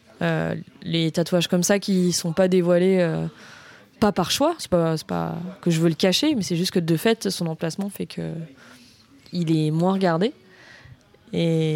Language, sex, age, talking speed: French, female, 20-39, 190 wpm